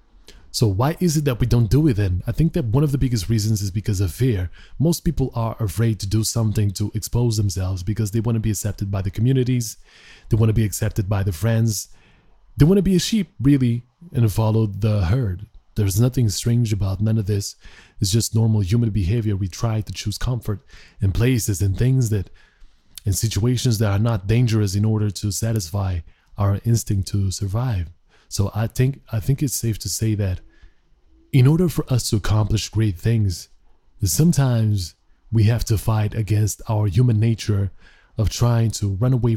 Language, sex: English, male